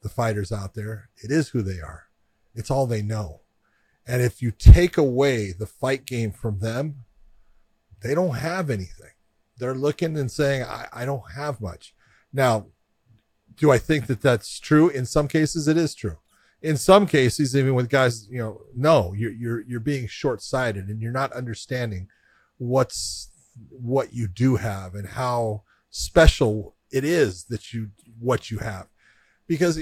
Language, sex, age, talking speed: English, male, 40-59, 170 wpm